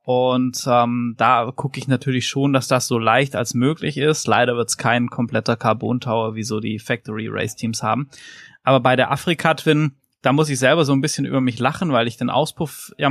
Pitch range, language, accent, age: 125-140 Hz, German, German, 20-39